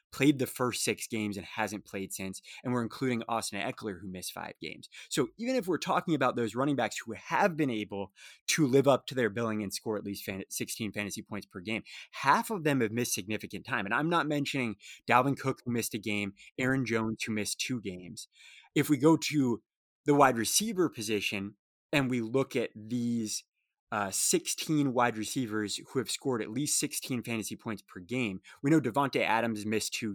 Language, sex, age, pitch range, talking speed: English, male, 20-39, 105-130 Hz, 205 wpm